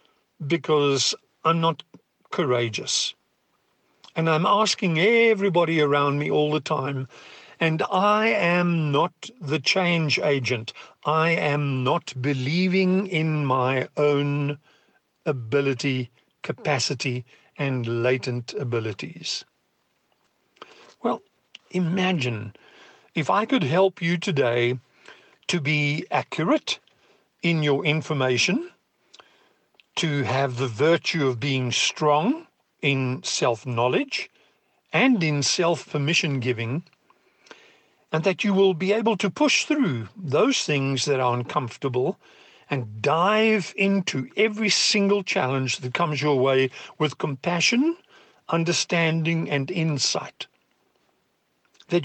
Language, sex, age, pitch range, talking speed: English, male, 50-69, 135-185 Hz, 105 wpm